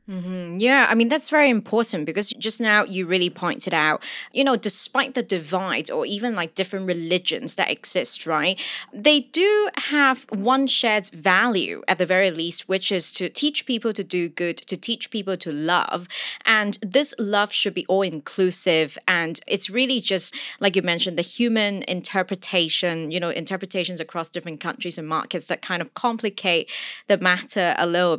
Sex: female